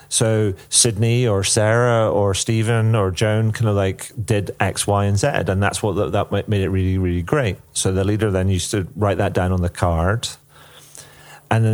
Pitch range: 95-120 Hz